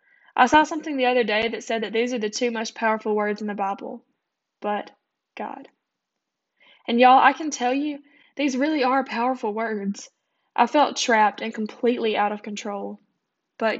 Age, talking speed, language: 10-29, 180 wpm, English